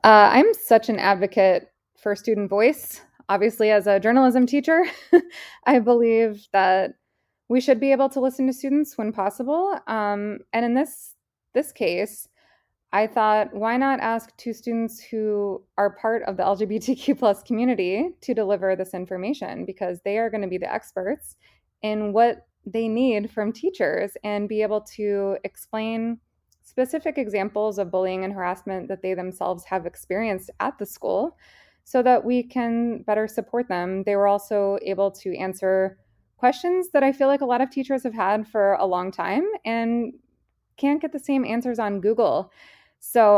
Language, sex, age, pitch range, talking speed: English, female, 20-39, 200-265 Hz, 165 wpm